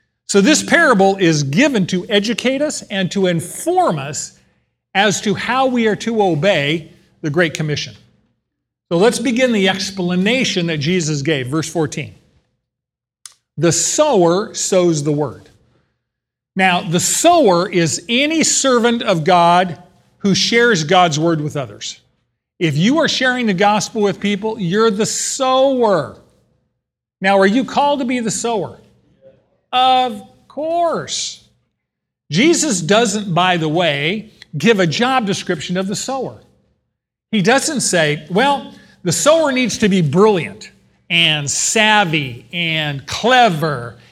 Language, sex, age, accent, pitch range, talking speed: English, male, 40-59, American, 170-230 Hz, 135 wpm